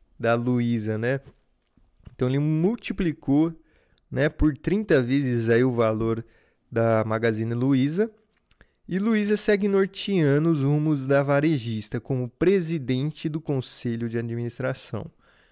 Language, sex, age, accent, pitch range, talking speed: Portuguese, male, 20-39, Brazilian, 120-155 Hz, 115 wpm